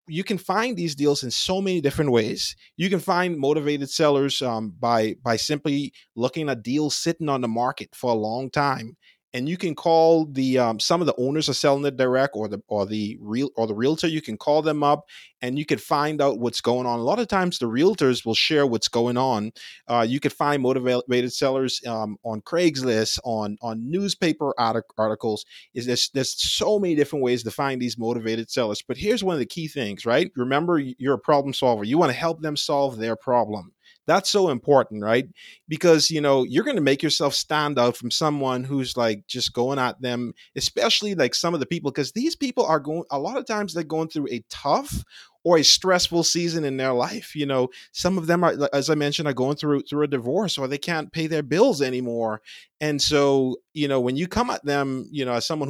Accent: American